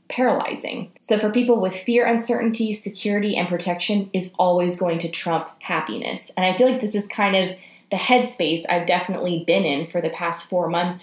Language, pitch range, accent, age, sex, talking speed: English, 175-220 Hz, American, 20-39, female, 190 wpm